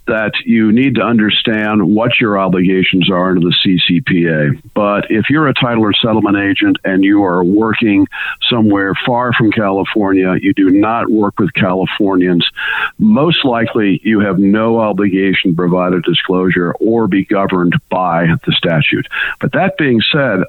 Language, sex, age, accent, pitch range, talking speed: English, male, 50-69, American, 95-130 Hz, 160 wpm